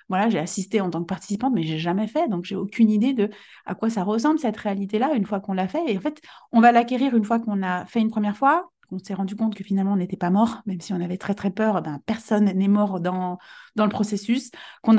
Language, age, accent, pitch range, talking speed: French, 30-49, French, 200-240 Hz, 275 wpm